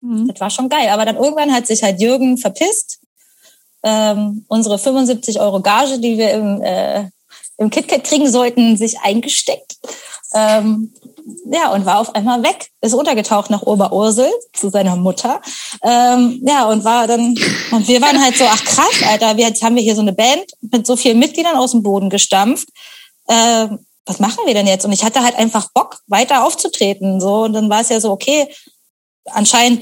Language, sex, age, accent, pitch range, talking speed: German, female, 20-39, German, 215-275 Hz, 185 wpm